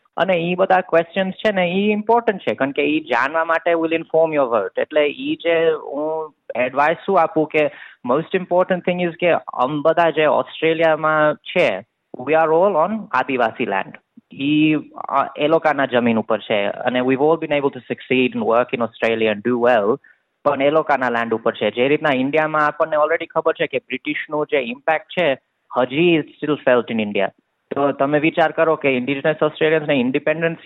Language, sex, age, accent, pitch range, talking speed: Gujarati, male, 20-39, native, 125-160 Hz, 175 wpm